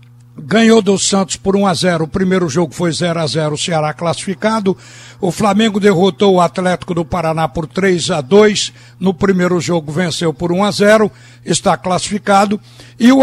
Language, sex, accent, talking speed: Portuguese, male, Brazilian, 150 wpm